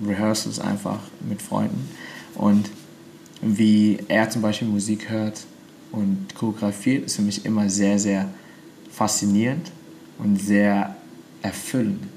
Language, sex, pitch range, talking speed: German, male, 105-115 Hz, 115 wpm